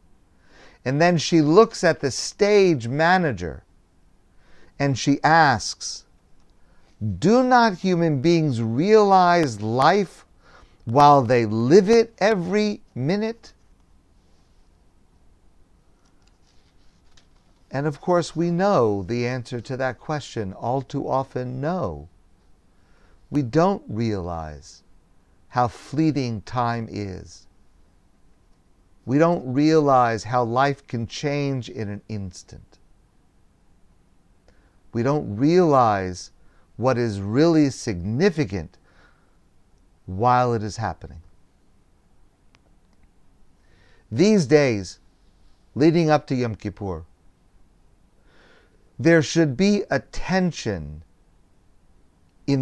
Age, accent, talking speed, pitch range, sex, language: 50-69, American, 90 wpm, 90-145 Hz, male, English